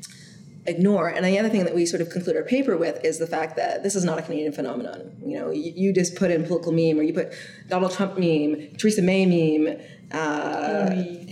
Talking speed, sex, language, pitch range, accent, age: 225 wpm, female, English, 160-190 Hz, American, 30-49